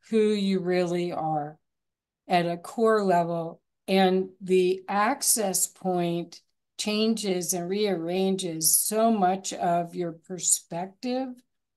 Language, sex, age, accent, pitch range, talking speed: English, female, 50-69, American, 175-195 Hz, 100 wpm